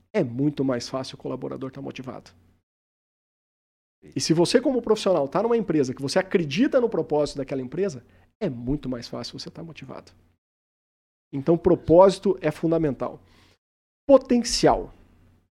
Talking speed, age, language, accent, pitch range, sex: 145 wpm, 50-69, Portuguese, Brazilian, 130-185 Hz, male